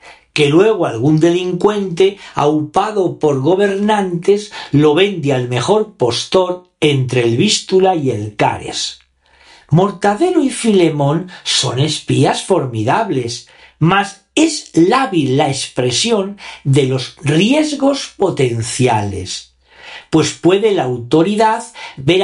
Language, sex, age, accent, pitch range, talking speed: Spanish, male, 50-69, Spanish, 140-220 Hz, 105 wpm